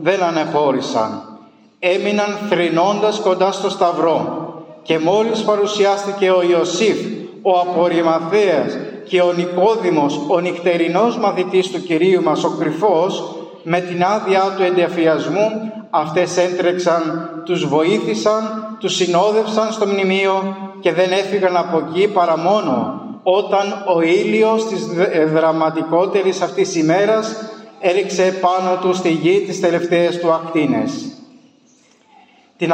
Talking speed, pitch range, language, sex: 115 wpm, 175-205 Hz, Greek, male